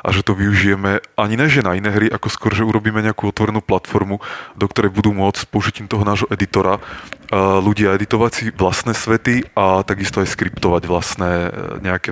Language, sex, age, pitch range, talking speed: Czech, male, 20-39, 95-110 Hz, 185 wpm